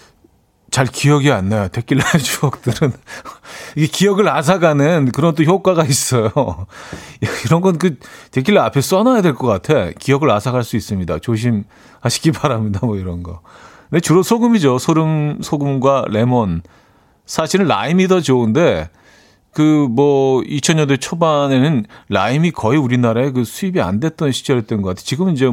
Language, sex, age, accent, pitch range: Korean, male, 40-59, native, 115-165 Hz